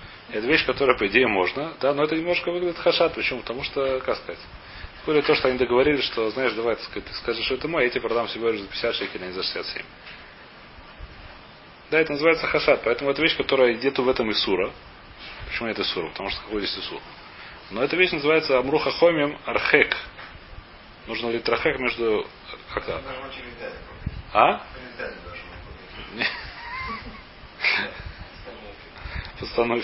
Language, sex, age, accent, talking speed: Russian, male, 30-49, native, 155 wpm